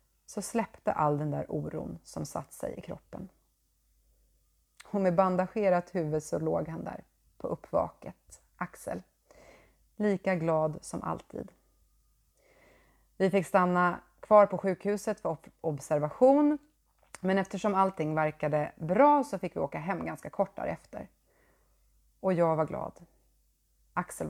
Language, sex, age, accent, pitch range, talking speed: Swedish, female, 30-49, native, 150-190 Hz, 130 wpm